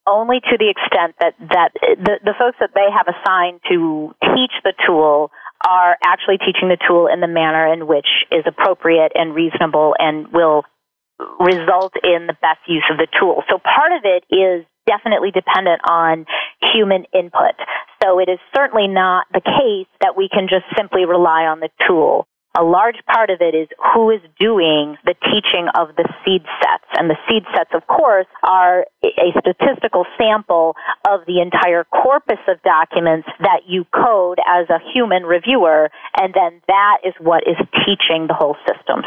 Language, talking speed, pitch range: English, 175 wpm, 165-200 Hz